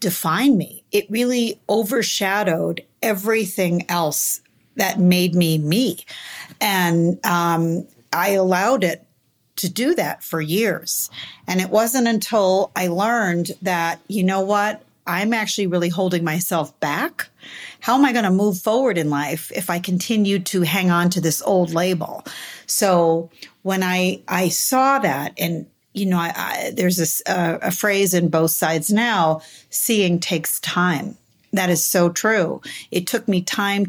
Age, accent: 50-69, American